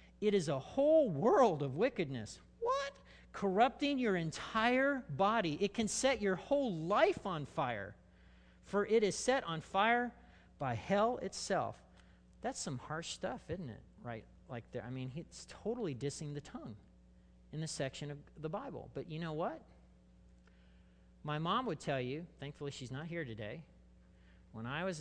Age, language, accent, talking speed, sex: 40-59, English, American, 165 wpm, male